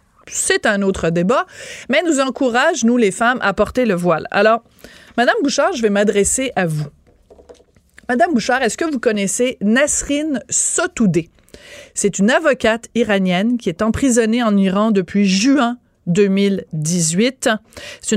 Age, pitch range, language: 30-49, 200-255 Hz, French